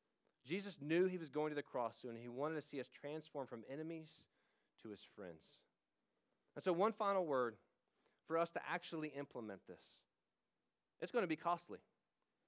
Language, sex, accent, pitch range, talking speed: English, male, American, 140-175 Hz, 180 wpm